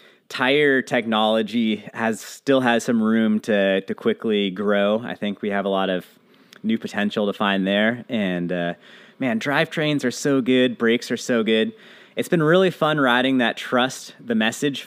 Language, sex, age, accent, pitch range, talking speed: English, male, 30-49, American, 100-140 Hz, 175 wpm